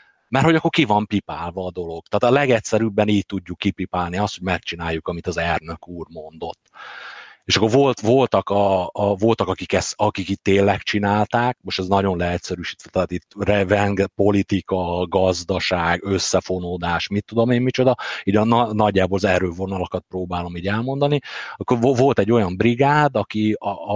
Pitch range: 95-120 Hz